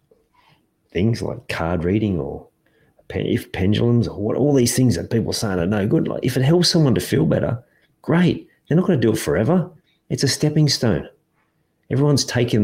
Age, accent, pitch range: 40-59, Australian, 90-120 Hz